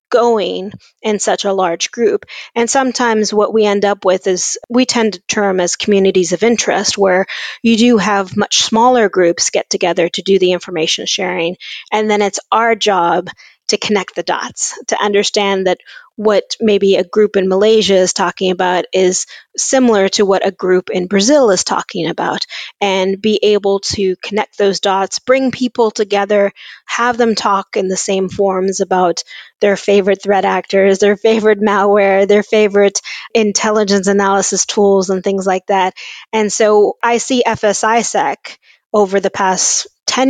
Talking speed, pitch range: 165 wpm, 190-225 Hz